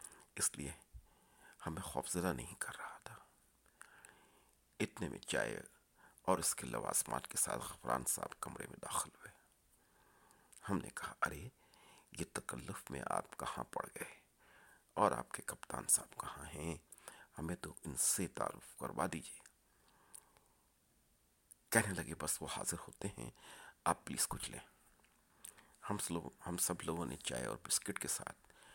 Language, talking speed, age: Urdu, 145 wpm, 50-69